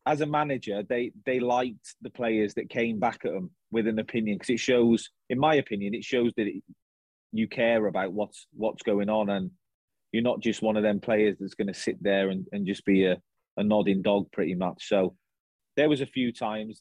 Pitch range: 105-125 Hz